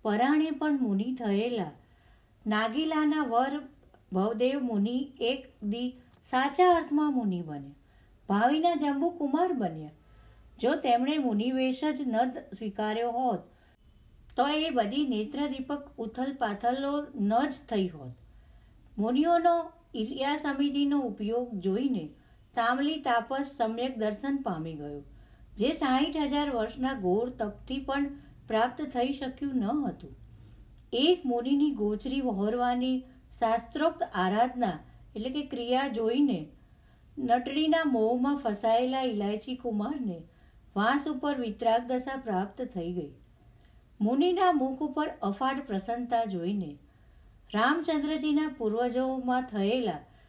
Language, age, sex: Gujarati, 50-69, female